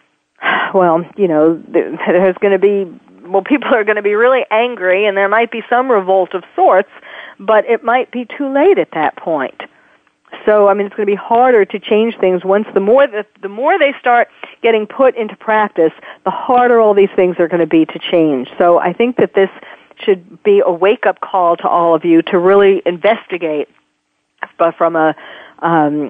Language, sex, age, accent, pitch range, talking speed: English, female, 50-69, American, 175-245 Hz, 200 wpm